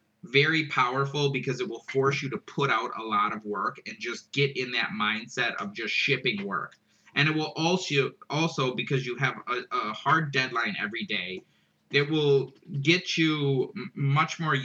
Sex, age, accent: male, 20-39, American